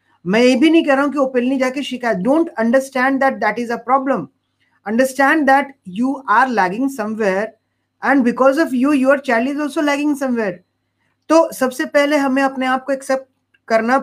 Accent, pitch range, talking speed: native, 215-275 Hz, 145 wpm